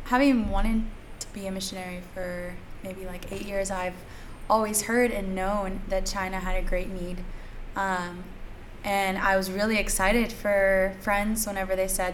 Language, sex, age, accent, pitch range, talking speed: English, female, 20-39, American, 185-205 Hz, 165 wpm